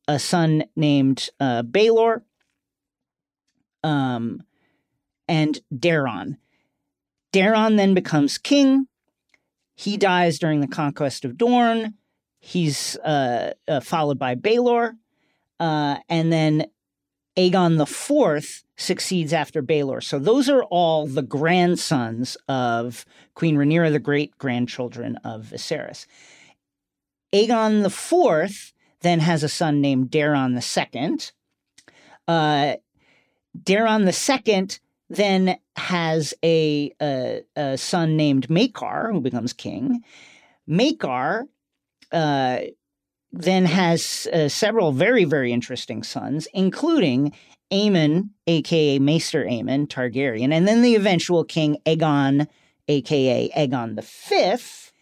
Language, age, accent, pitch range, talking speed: English, 40-59, American, 140-190 Hz, 105 wpm